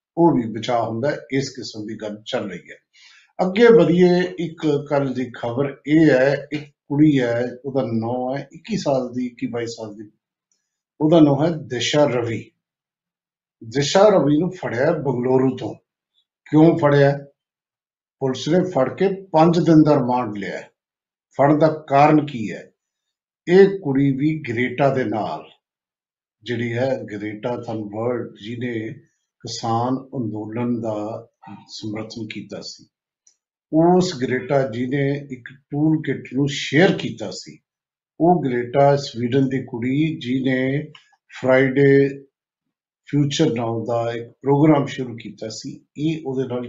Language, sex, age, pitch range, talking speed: Punjabi, male, 50-69, 120-155 Hz, 100 wpm